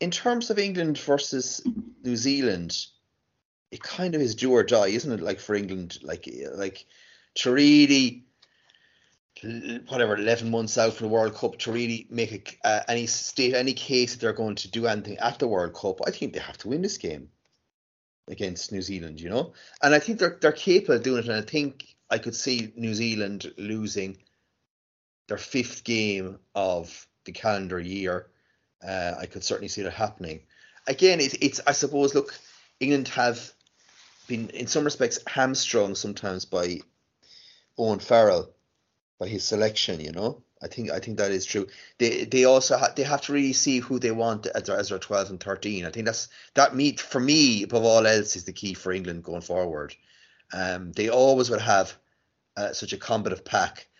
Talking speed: 190 wpm